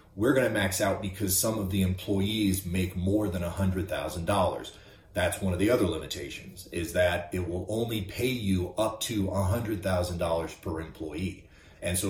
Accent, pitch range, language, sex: American, 90-110 Hz, English, male